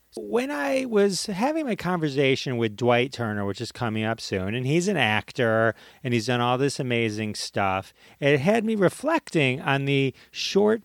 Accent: American